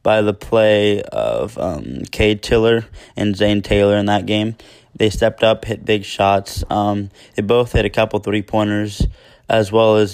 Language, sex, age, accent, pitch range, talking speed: English, male, 20-39, American, 100-115 Hz, 170 wpm